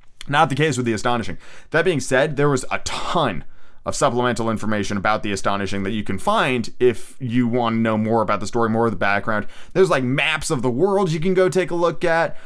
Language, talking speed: English, 235 wpm